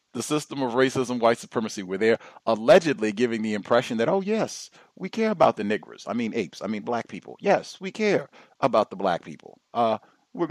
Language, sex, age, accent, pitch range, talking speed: English, male, 40-59, American, 125-165 Hz, 205 wpm